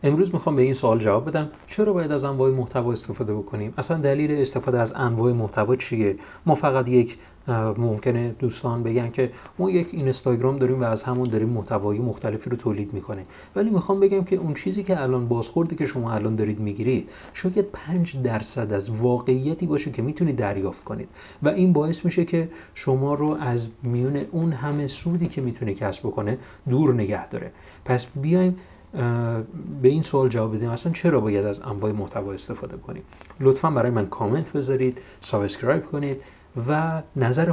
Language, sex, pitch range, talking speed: Persian, male, 110-150 Hz, 175 wpm